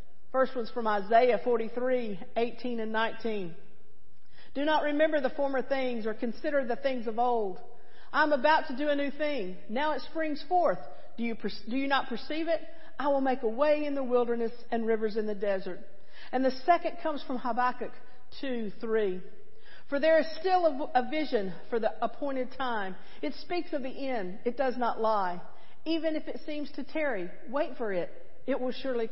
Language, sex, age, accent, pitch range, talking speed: English, female, 50-69, American, 225-300 Hz, 190 wpm